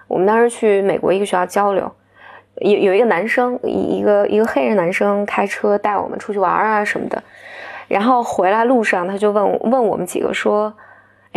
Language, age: Chinese, 20-39